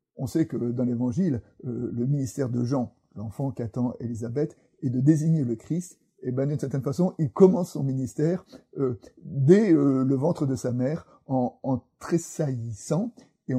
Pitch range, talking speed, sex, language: 125-160 Hz, 170 wpm, male, French